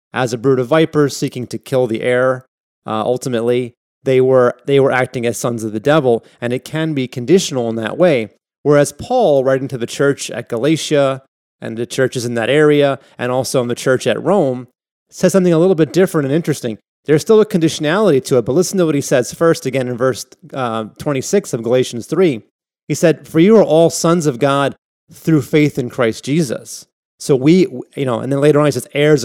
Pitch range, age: 125-155 Hz, 30-49